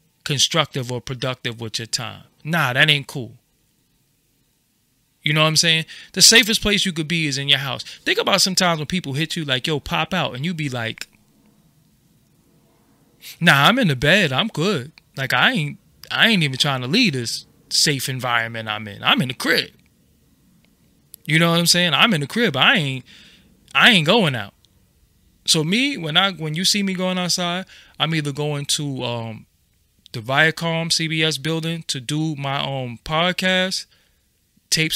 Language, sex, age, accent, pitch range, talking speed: English, male, 20-39, American, 130-170 Hz, 180 wpm